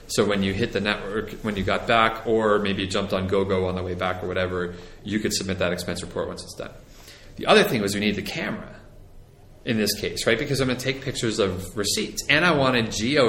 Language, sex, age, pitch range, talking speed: English, male, 30-49, 95-110 Hz, 245 wpm